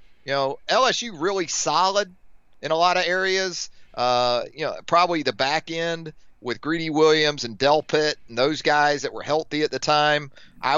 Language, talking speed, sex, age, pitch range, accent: English, 180 wpm, male, 30-49, 120-155 Hz, American